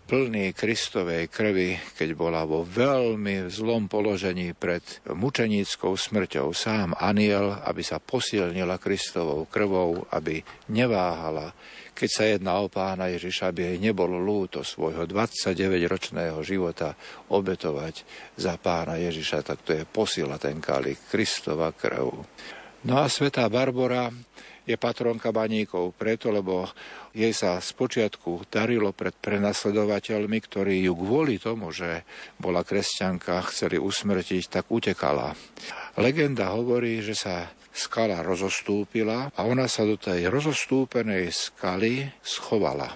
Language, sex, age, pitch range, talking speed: Slovak, male, 50-69, 90-120 Hz, 120 wpm